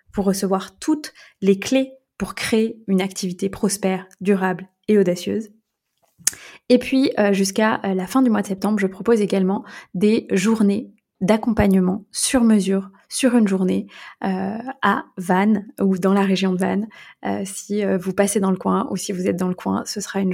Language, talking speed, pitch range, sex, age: French, 175 wpm, 190-215 Hz, female, 20-39